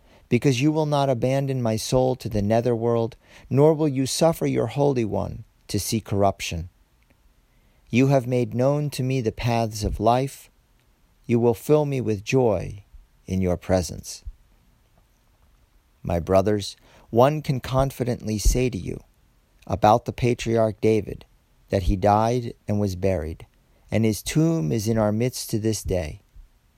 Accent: American